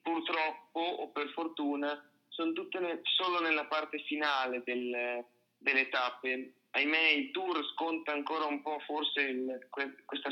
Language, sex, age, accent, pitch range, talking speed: Italian, male, 30-49, native, 130-160 Hz, 145 wpm